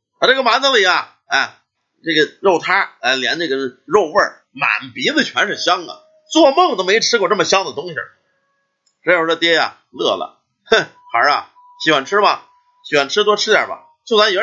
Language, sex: Chinese, male